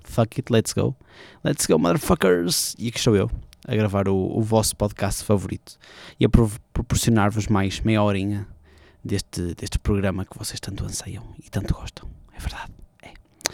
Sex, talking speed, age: male, 160 wpm, 20-39